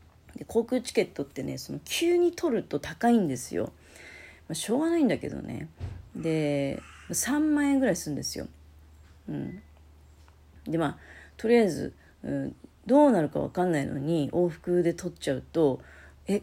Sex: female